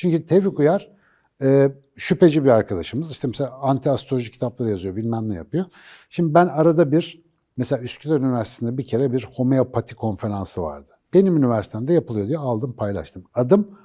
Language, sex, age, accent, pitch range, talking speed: Turkish, male, 60-79, native, 110-160 Hz, 150 wpm